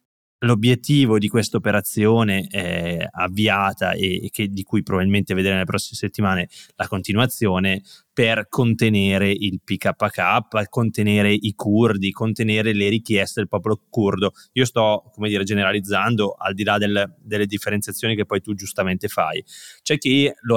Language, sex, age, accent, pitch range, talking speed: Italian, male, 20-39, native, 95-115 Hz, 140 wpm